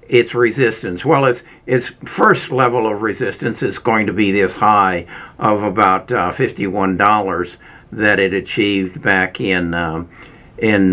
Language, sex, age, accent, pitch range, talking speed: English, male, 60-79, American, 95-120 Hz, 145 wpm